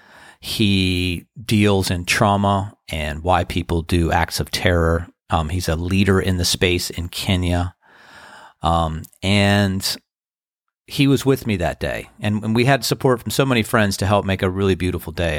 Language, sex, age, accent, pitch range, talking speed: English, male, 40-59, American, 90-120 Hz, 170 wpm